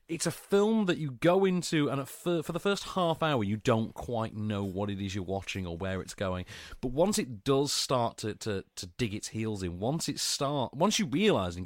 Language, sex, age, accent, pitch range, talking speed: English, male, 40-59, British, 115-170 Hz, 240 wpm